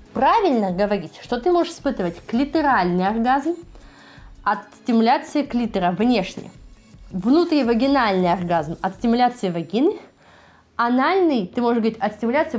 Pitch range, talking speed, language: 195-250 Hz, 115 wpm, Russian